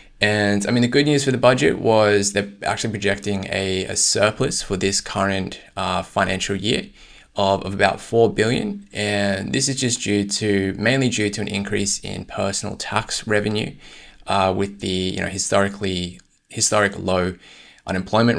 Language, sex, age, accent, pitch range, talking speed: English, male, 20-39, Australian, 95-105 Hz, 165 wpm